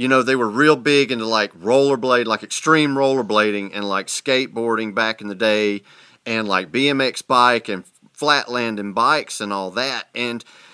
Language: English